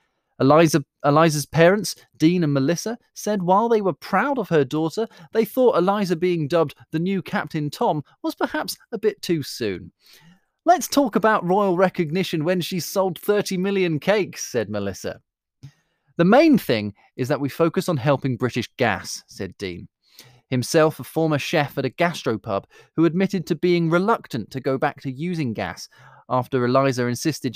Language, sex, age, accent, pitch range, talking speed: English, male, 30-49, British, 130-190 Hz, 165 wpm